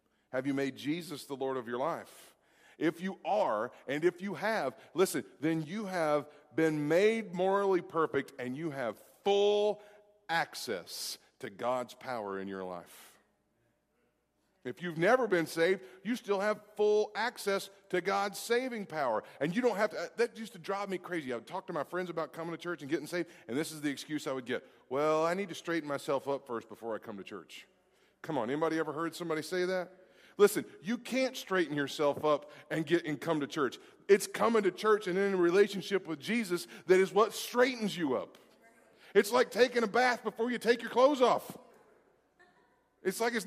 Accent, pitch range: American, 160-235 Hz